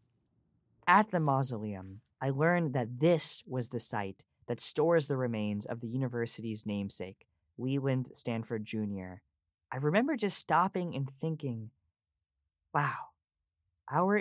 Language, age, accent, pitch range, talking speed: English, 10-29, American, 105-150 Hz, 120 wpm